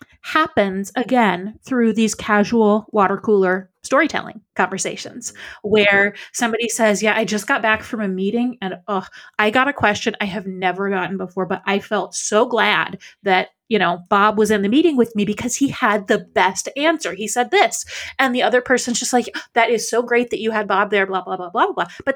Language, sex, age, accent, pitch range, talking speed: English, female, 30-49, American, 200-250 Hz, 205 wpm